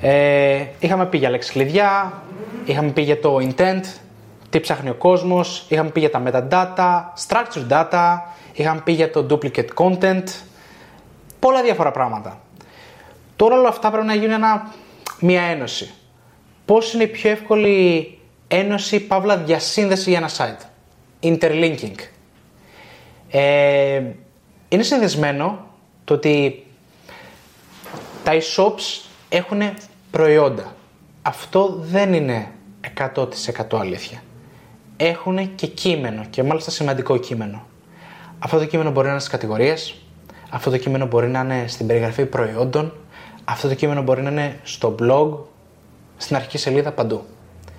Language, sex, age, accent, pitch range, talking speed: Greek, male, 20-39, native, 135-185 Hz, 125 wpm